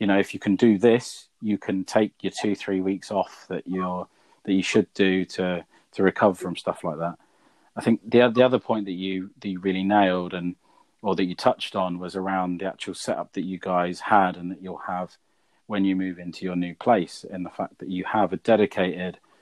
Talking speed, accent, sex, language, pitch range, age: 230 wpm, British, male, English, 95-110 Hz, 30-49